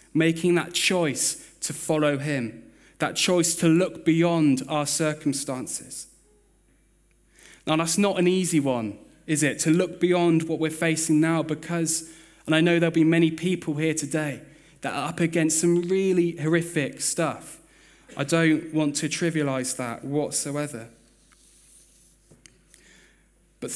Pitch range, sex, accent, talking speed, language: 140-170 Hz, male, British, 135 wpm, English